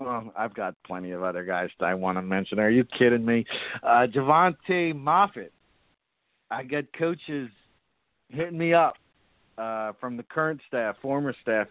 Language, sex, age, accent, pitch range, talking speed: English, male, 50-69, American, 110-130 Hz, 165 wpm